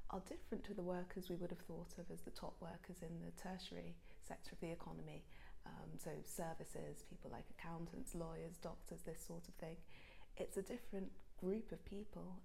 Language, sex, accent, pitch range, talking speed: French, female, British, 165-185 Hz, 190 wpm